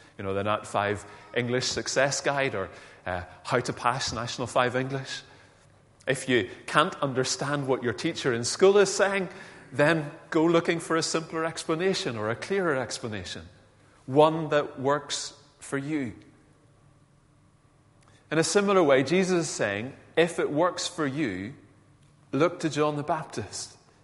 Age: 30-49